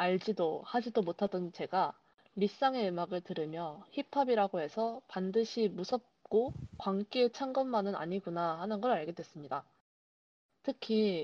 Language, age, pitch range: Korean, 20-39, 180-230 Hz